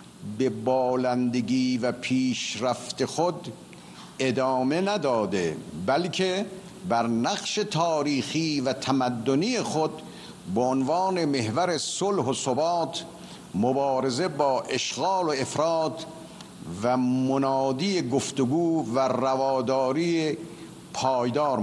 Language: Persian